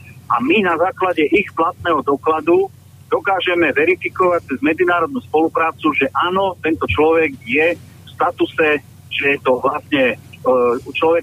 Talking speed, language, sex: 130 wpm, Slovak, male